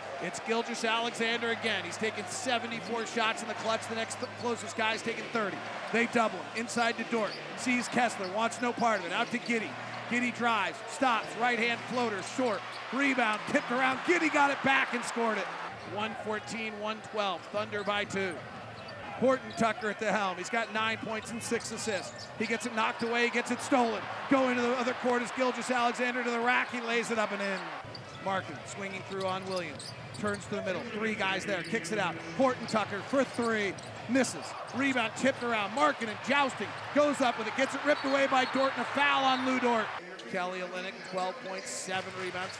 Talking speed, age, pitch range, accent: 195 wpm, 40-59, 200-240 Hz, American